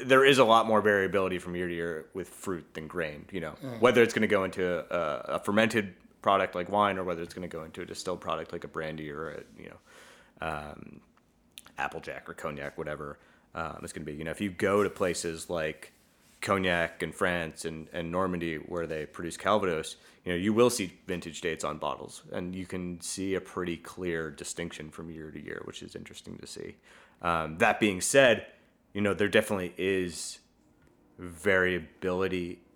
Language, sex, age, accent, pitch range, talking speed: English, male, 30-49, American, 85-95 Hz, 200 wpm